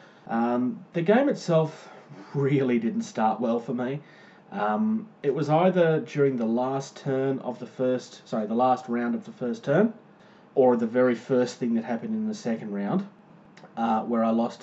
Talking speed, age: 180 wpm, 30-49